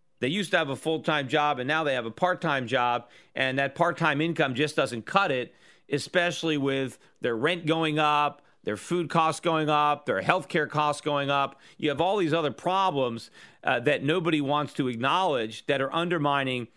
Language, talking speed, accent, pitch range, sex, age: English, 195 wpm, American, 135-165 Hz, male, 40-59